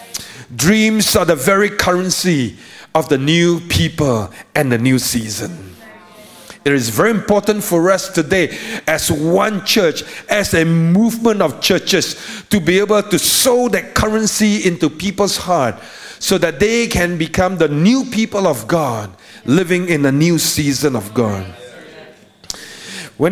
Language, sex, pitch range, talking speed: English, male, 160-225 Hz, 145 wpm